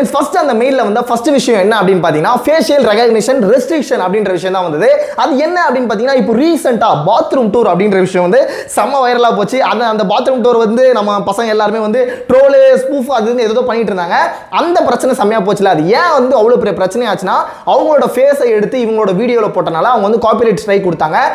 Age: 20-39